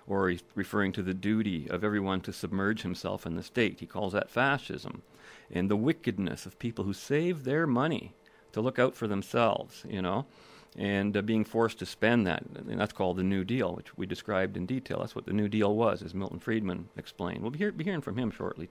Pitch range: 95-120 Hz